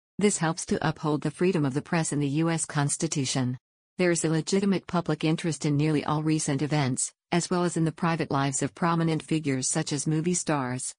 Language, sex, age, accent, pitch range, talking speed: English, female, 50-69, American, 145-170 Hz, 205 wpm